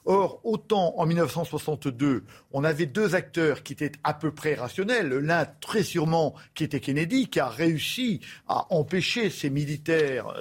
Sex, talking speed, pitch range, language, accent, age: male, 155 wpm, 130-175 Hz, French, French, 50-69